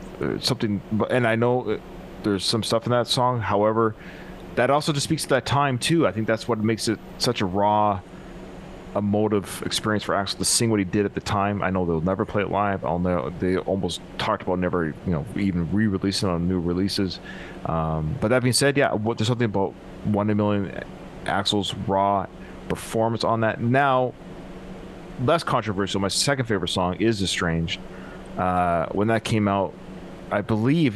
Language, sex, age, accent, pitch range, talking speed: English, male, 30-49, American, 90-110 Hz, 190 wpm